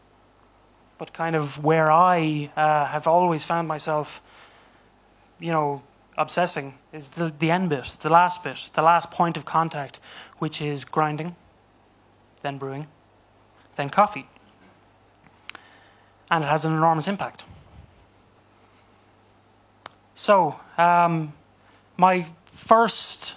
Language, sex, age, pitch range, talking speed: English, male, 20-39, 110-170 Hz, 110 wpm